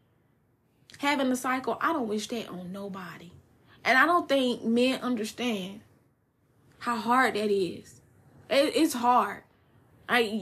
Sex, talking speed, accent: female, 125 wpm, American